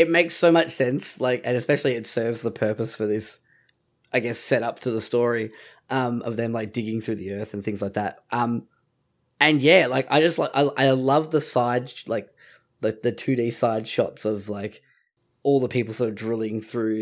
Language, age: English, 10-29